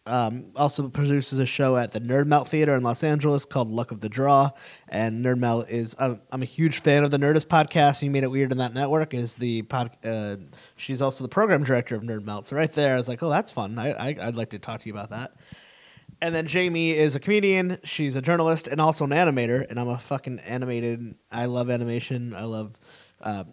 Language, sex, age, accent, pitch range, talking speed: English, male, 20-39, American, 120-150 Hz, 235 wpm